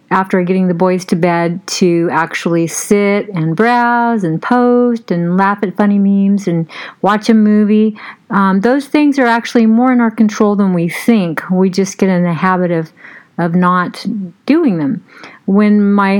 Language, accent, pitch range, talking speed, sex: English, American, 180-225 Hz, 175 wpm, female